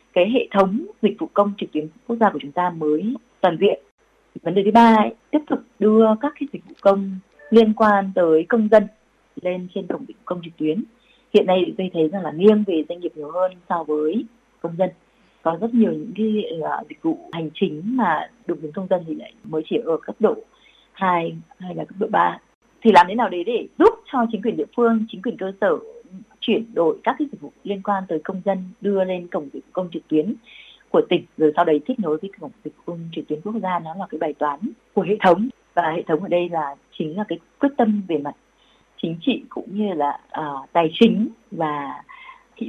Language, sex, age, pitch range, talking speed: Vietnamese, female, 20-39, 170-240 Hz, 230 wpm